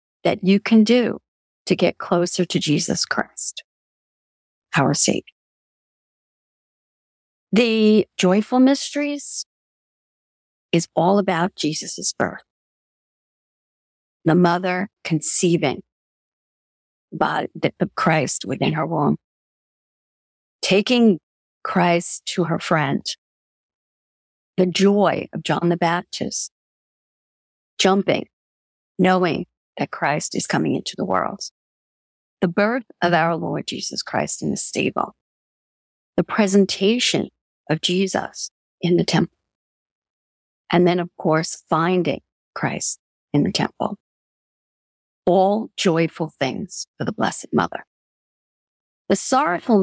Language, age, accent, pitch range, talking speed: English, 50-69, American, 165-205 Hz, 100 wpm